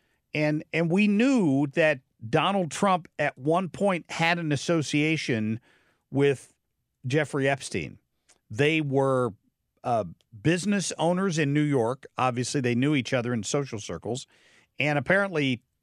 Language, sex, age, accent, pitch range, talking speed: English, male, 50-69, American, 120-160 Hz, 130 wpm